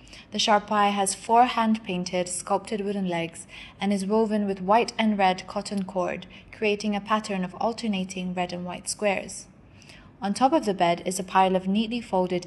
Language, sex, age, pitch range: English, female, 20-39, 180-215 Hz